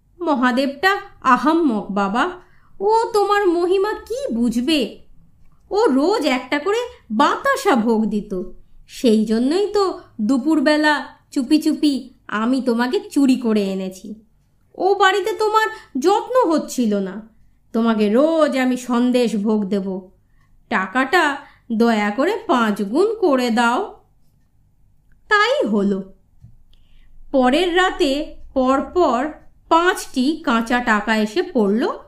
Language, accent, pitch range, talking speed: Bengali, native, 220-330 Hz, 105 wpm